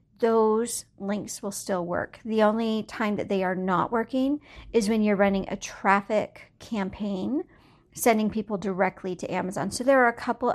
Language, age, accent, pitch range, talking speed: English, 50-69, American, 205-250 Hz, 170 wpm